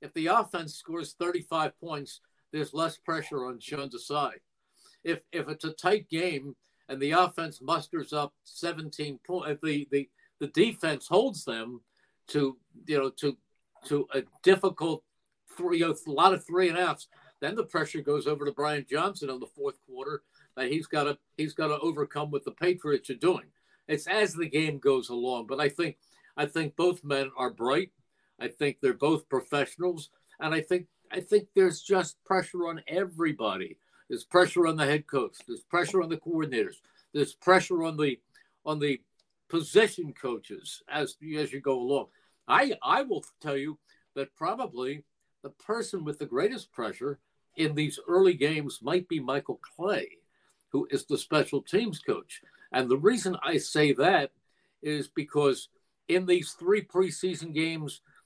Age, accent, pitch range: 50-69, American, 145-180 Hz